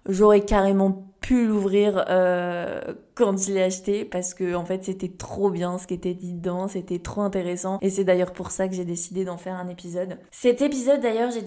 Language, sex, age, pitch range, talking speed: French, female, 20-39, 185-220 Hz, 210 wpm